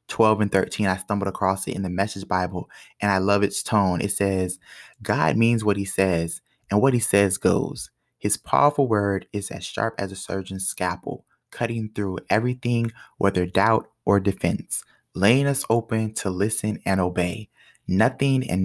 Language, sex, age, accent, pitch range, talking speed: English, male, 20-39, American, 95-105 Hz, 175 wpm